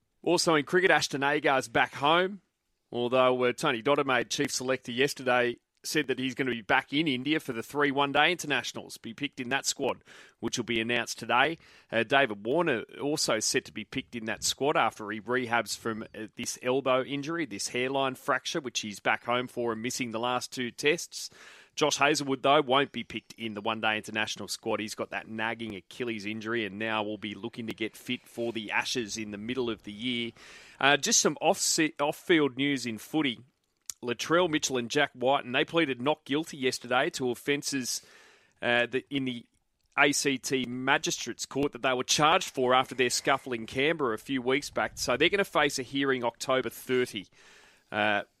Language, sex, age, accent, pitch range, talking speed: English, male, 30-49, Australian, 115-145 Hz, 190 wpm